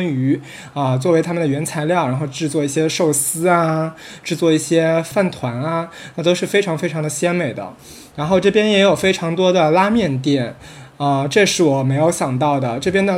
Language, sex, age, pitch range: Chinese, male, 20-39, 145-175 Hz